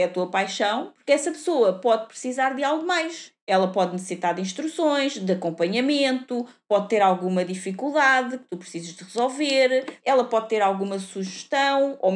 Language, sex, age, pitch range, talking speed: Portuguese, female, 20-39, 200-275 Hz, 165 wpm